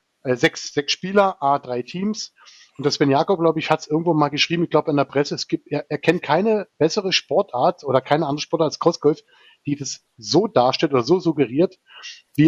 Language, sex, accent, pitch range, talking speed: German, male, German, 145-175 Hz, 210 wpm